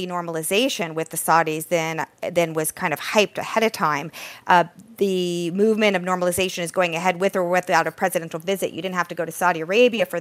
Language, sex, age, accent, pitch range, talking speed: English, female, 40-59, American, 165-200 Hz, 210 wpm